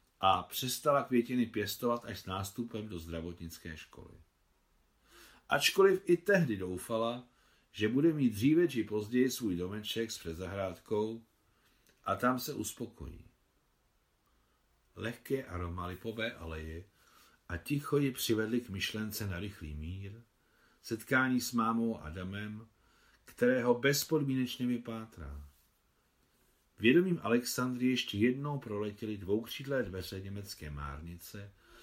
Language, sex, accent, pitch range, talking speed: Czech, male, native, 85-125 Hz, 110 wpm